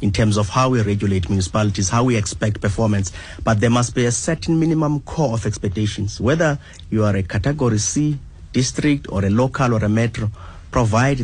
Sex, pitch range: male, 100-125 Hz